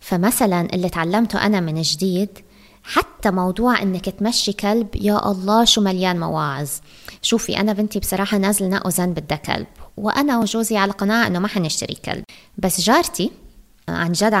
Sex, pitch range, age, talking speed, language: female, 180-230 Hz, 20-39, 150 wpm, Arabic